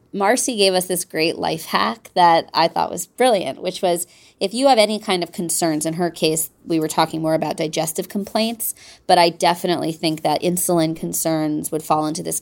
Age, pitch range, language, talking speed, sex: 20-39, 160-195 Hz, English, 210 wpm, female